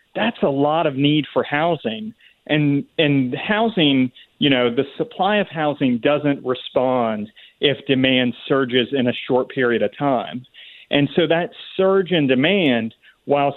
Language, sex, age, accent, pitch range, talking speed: English, male, 40-59, American, 125-155 Hz, 150 wpm